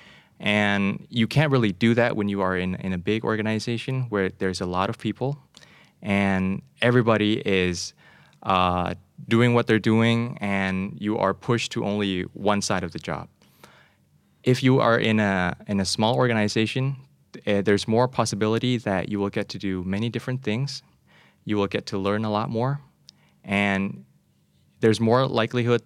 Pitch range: 95-115 Hz